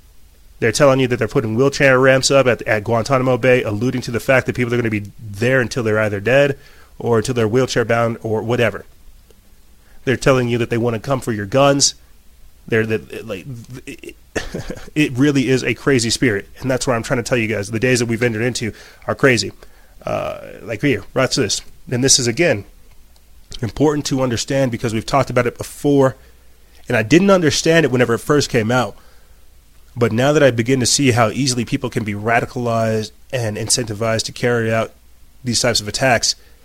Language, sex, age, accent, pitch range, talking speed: English, male, 30-49, American, 110-135 Hz, 200 wpm